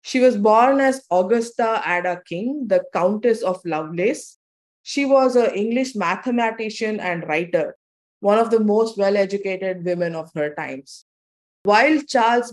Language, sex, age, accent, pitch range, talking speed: English, female, 20-39, Indian, 185-240 Hz, 140 wpm